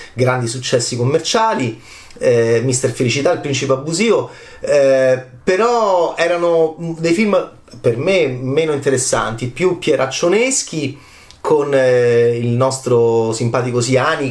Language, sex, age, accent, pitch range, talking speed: Italian, male, 30-49, native, 130-190 Hz, 110 wpm